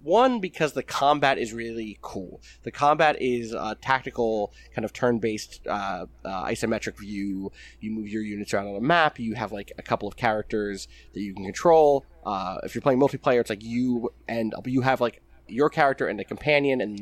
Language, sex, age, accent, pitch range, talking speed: English, male, 20-39, American, 110-135 Hz, 195 wpm